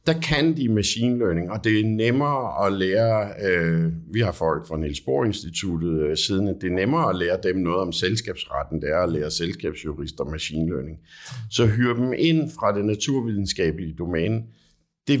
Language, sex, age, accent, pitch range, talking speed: Danish, male, 60-79, native, 80-110 Hz, 180 wpm